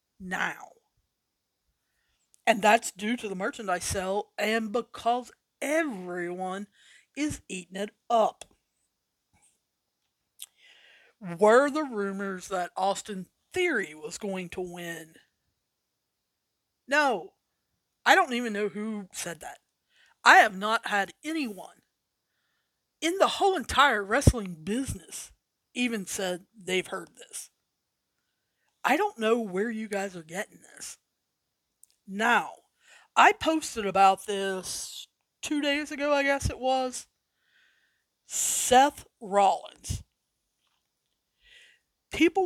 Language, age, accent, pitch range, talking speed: English, 40-59, American, 200-295 Hz, 105 wpm